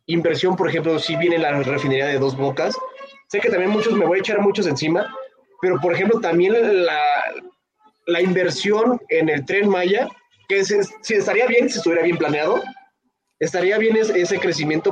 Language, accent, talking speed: Spanish, Mexican, 185 wpm